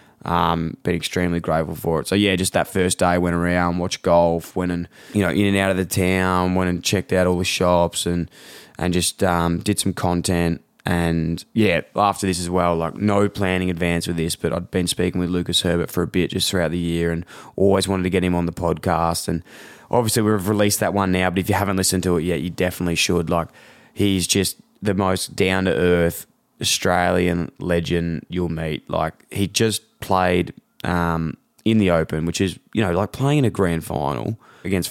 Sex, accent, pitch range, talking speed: male, Australian, 85-100 Hz, 210 wpm